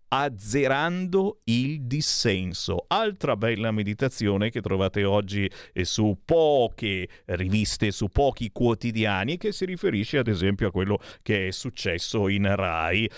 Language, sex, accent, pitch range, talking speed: Italian, male, native, 105-155 Hz, 125 wpm